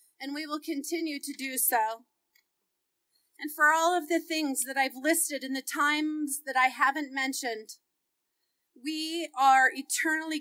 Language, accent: English, American